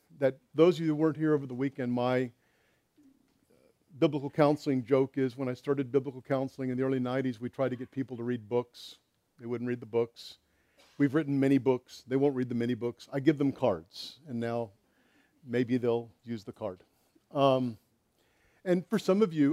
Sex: male